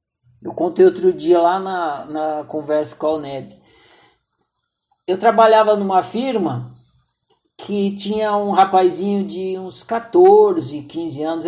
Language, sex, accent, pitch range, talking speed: Portuguese, male, Brazilian, 160-230 Hz, 125 wpm